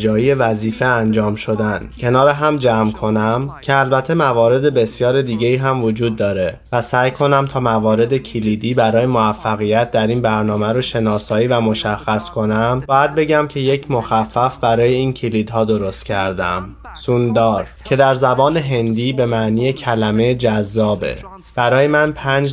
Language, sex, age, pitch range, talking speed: Persian, male, 20-39, 110-135 Hz, 145 wpm